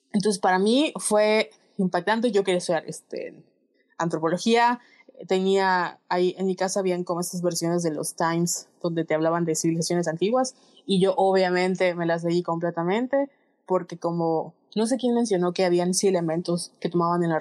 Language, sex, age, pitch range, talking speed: Spanish, female, 20-39, 170-195 Hz, 170 wpm